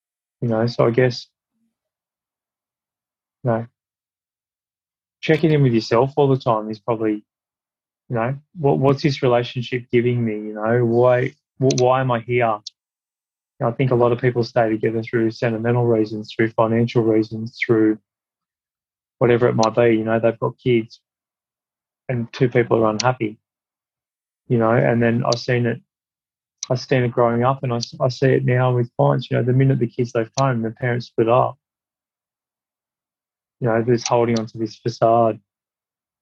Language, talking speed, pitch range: English, 165 wpm, 115-130 Hz